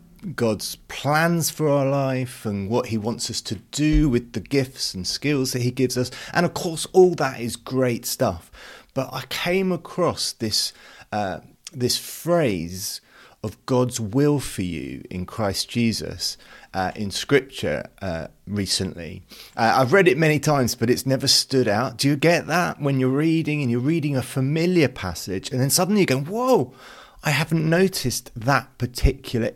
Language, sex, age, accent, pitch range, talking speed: English, male, 30-49, British, 105-150 Hz, 175 wpm